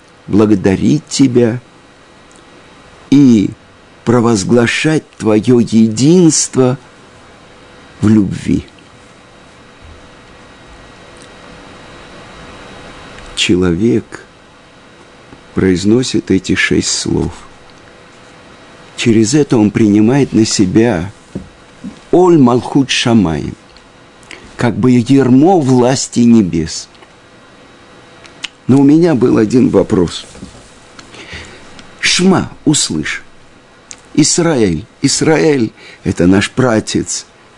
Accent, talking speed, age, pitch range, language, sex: native, 65 wpm, 50-69, 100-130 Hz, Russian, male